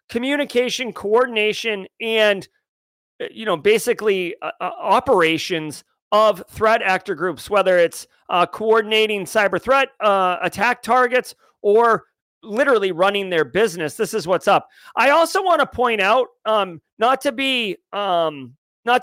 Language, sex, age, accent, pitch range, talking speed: English, male, 40-59, American, 180-265 Hz, 135 wpm